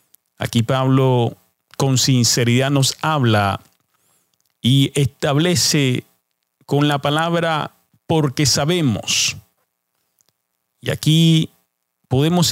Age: 40-59